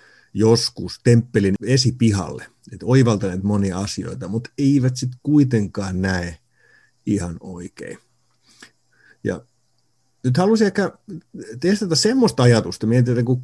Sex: male